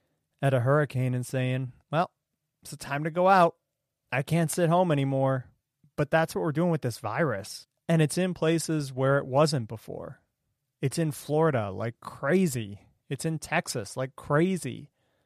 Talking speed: 170 wpm